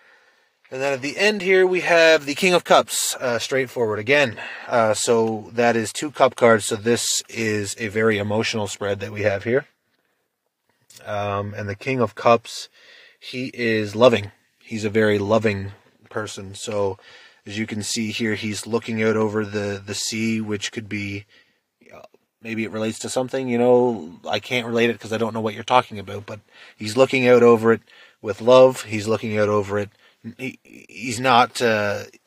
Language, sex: English, male